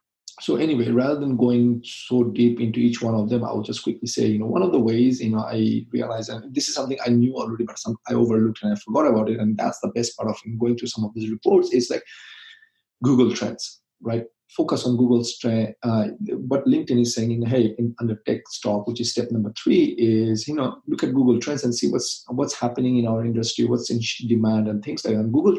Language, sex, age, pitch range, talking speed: English, male, 40-59, 110-120 Hz, 245 wpm